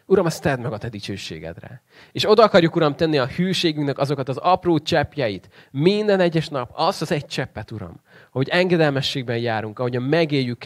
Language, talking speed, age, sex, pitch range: Hungarian, 180 wpm, 30-49, male, 115-150 Hz